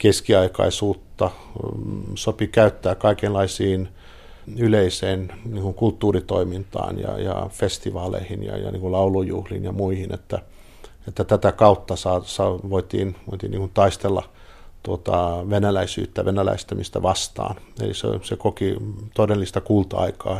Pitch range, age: 95-105 Hz, 50-69